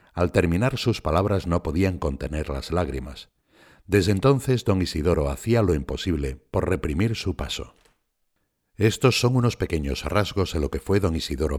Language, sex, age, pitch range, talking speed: Spanish, male, 60-79, 75-105 Hz, 160 wpm